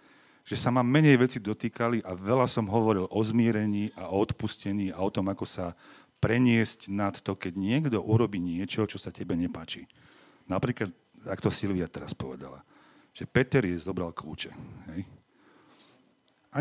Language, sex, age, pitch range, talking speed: Slovak, male, 40-59, 95-120 Hz, 160 wpm